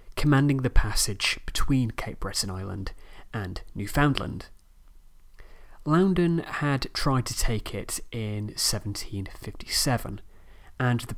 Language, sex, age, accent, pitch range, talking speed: English, male, 30-49, British, 95-120 Hz, 100 wpm